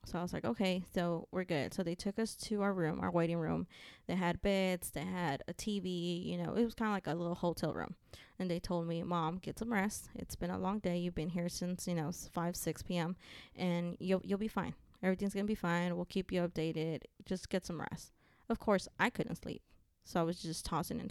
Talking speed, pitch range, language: 245 wpm, 170-195 Hz, English